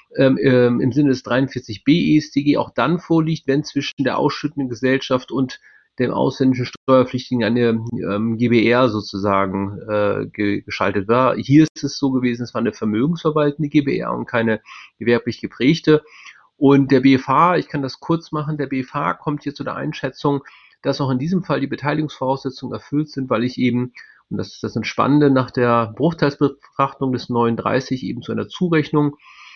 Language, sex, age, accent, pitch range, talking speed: German, male, 30-49, German, 120-145 Hz, 165 wpm